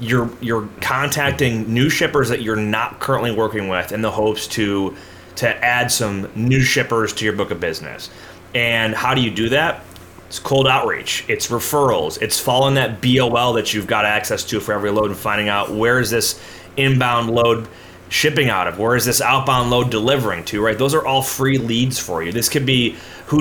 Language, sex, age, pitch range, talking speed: English, male, 30-49, 105-130 Hz, 200 wpm